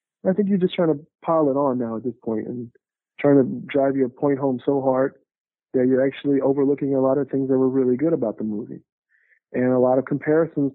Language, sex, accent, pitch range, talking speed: English, male, American, 130-160 Hz, 235 wpm